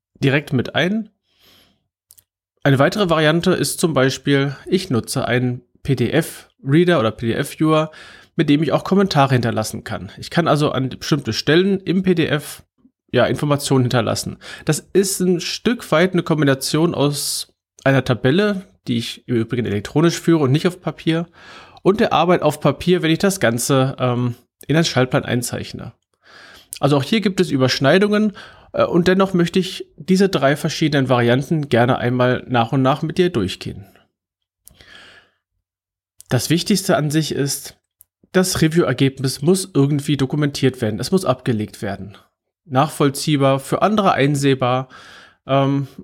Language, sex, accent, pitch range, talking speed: German, male, German, 125-175 Hz, 140 wpm